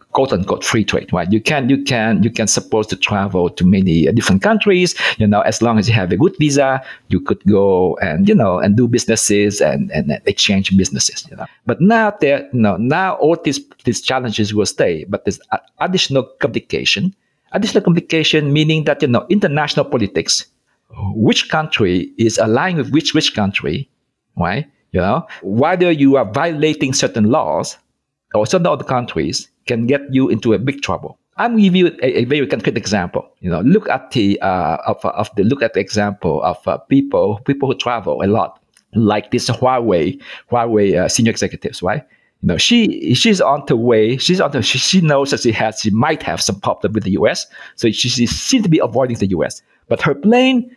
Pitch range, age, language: 110-160 Hz, 50-69, Bulgarian